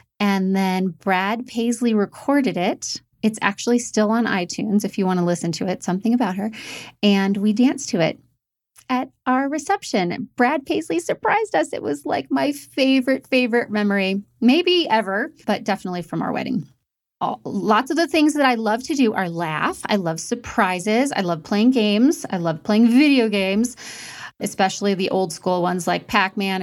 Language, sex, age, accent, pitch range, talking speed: English, female, 30-49, American, 185-245 Hz, 175 wpm